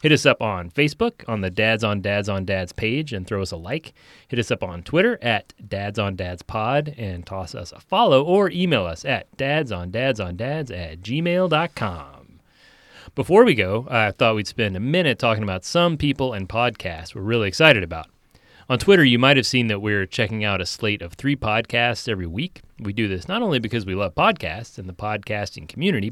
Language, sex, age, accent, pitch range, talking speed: English, male, 30-49, American, 95-135 Hz, 215 wpm